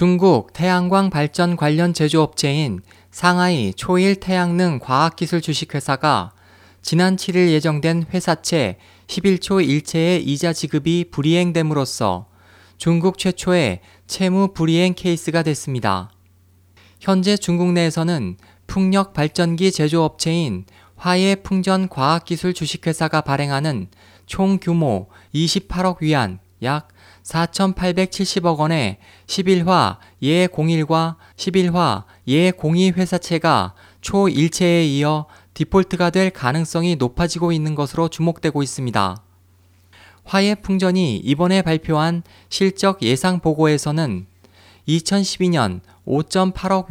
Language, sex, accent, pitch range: Korean, male, native, 110-180 Hz